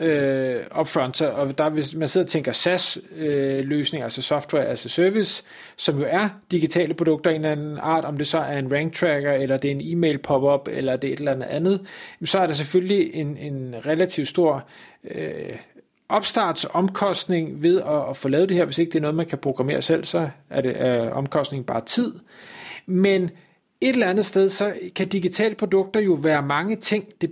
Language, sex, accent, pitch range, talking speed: Danish, male, native, 140-180 Hz, 205 wpm